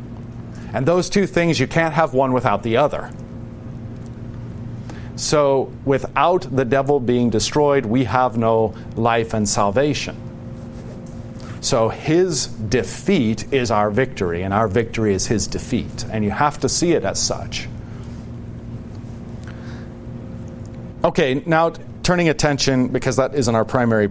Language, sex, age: English, male, 40-59